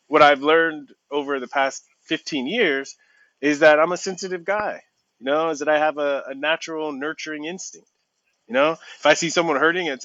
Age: 30-49